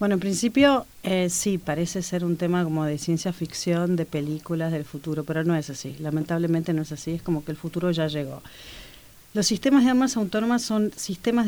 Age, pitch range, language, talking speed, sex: 40-59, 170-205 Hz, Spanish, 205 wpm, female